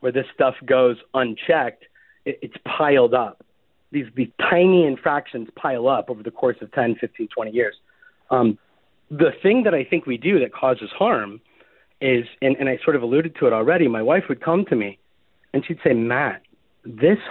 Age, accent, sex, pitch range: 30-49, American, male, 135-195 Hz